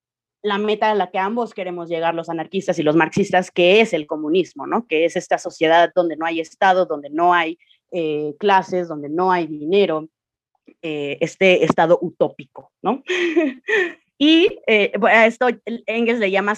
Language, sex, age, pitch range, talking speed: Spanish, female, 30-49, 185-235 Hz, 160 wpm